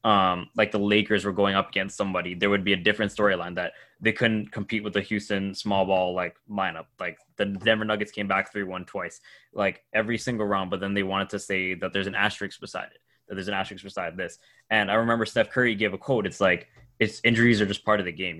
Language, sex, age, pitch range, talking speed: English, male, 10-29, 100-110 Hz, 245 wpm